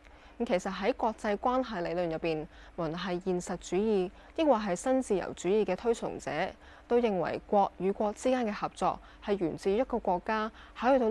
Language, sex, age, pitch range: Chinese, female, 10-29, 170-235 Hz